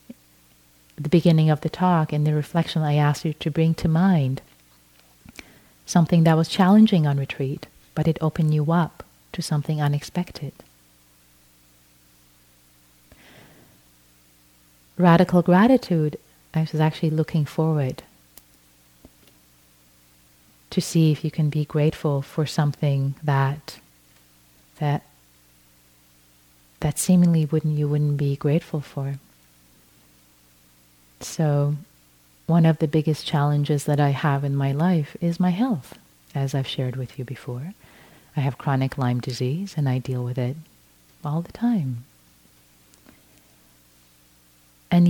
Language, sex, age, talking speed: English, female, 30-49, 120 wpm